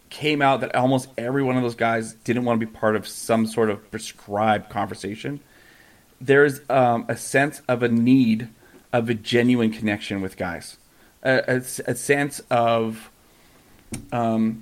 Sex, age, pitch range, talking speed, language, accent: male, 30-49, 115-135 Hz, 160 wpm, English, American